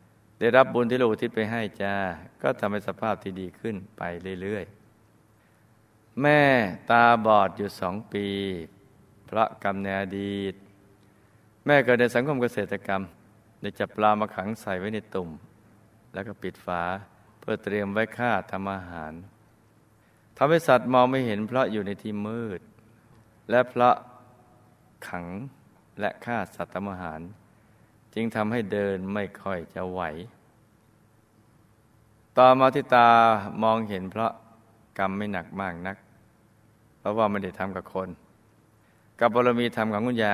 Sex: male